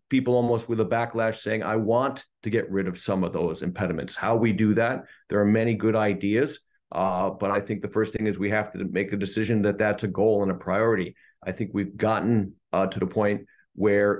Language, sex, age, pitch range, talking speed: English, male, 50-69, 95-110 Hz, 235 wpm